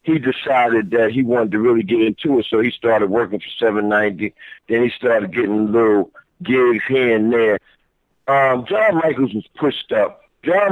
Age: 50-69